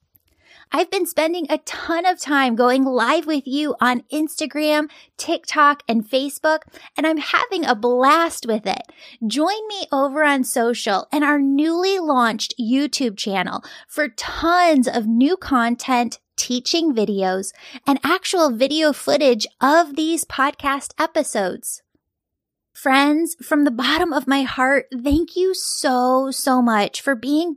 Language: English